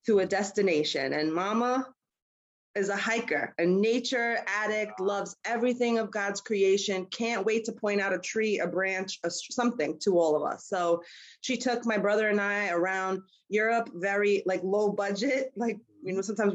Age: 30-49